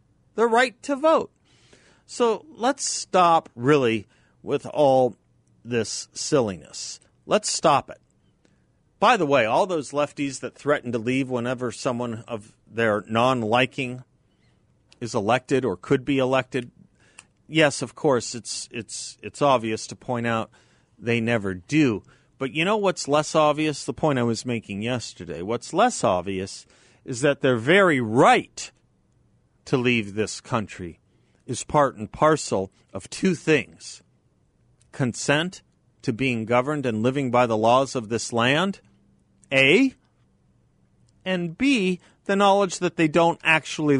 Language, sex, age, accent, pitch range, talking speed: English, male, 40-59, American, 115-150 Hz, 140 wpm